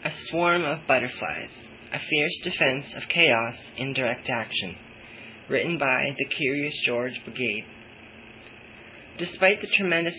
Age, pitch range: 20-39, 120-160 Hz